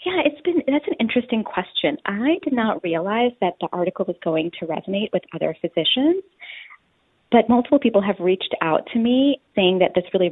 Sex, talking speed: female, 190 wpm